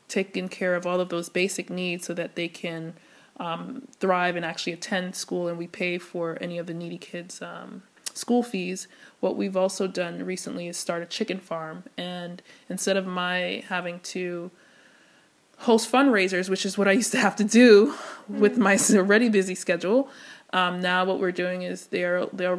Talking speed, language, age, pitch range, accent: 185 wpm, English, 20-39, 175-200 Hz, American